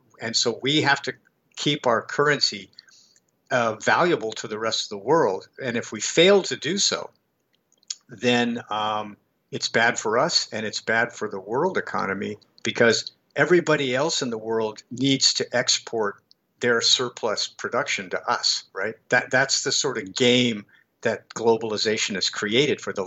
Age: 50-69